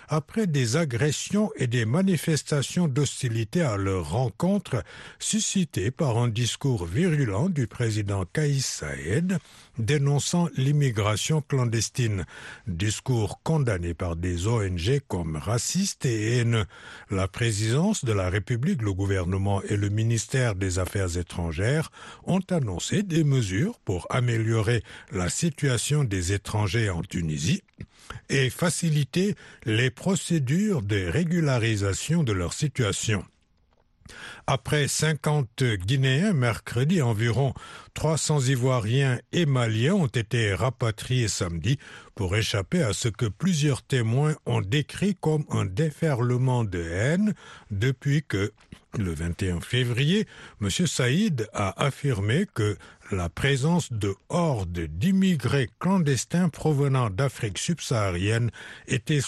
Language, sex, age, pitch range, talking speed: French, male, 60-79, 105-155 Hz, 115 wpm